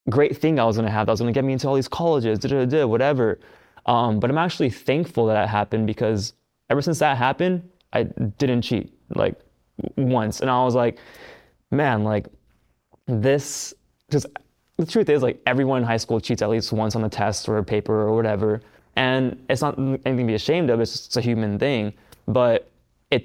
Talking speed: 205 wpm